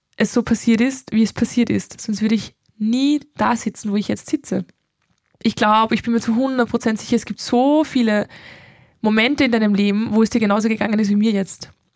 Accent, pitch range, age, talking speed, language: German, 200-235 Hz, 20-39, 215 wpm, German